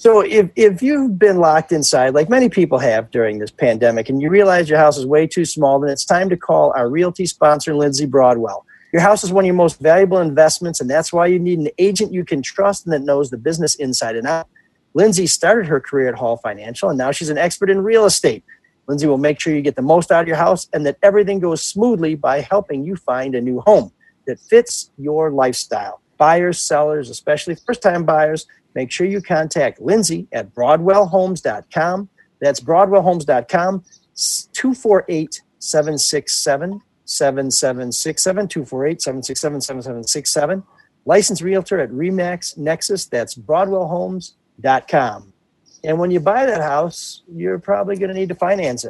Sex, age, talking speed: male, 50-69, 170 wpm